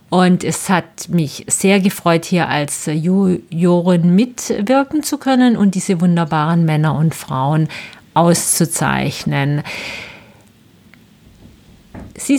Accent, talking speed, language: German, 95 wpm, German